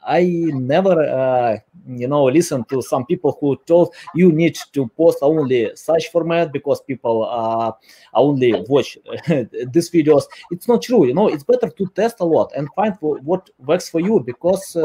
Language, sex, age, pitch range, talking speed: English, male, 30-49, 145-195 Hz, 175 wpm